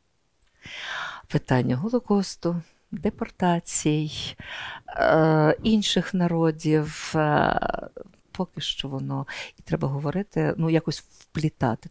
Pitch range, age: 135-175 Hz, 50-69